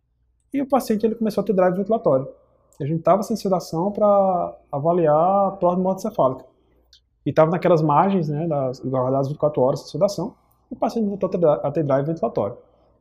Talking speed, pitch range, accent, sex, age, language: 180 wpm, 140-205 Hz, Brazilian, male, 20-39, Portuguese